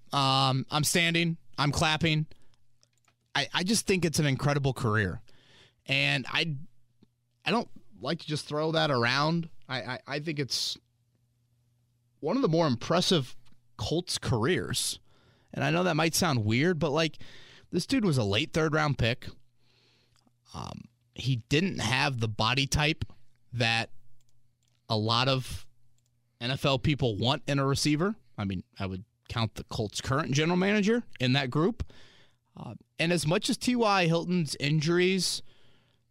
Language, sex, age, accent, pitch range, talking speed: English, male, 30-49, American, 120-150 Hz, 150 wpm